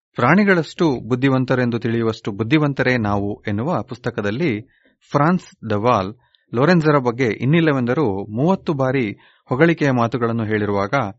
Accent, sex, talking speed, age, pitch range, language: native, male, 90 wpm, 30-49, 115-150 Hz, Kannada